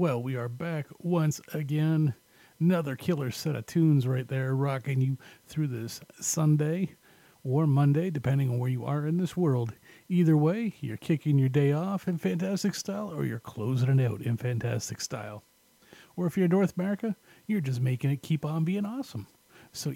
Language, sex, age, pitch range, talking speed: English, male, 40-59, 125-175 Hz, 185 wpm